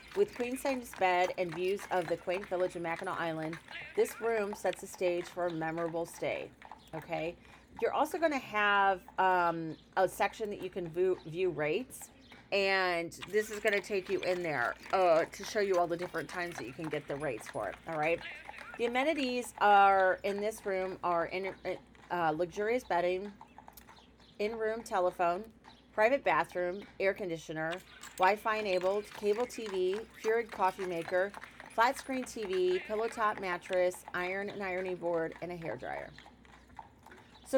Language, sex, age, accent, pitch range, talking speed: English, female, 30-49, American, 175-210 Hz, 165 wpm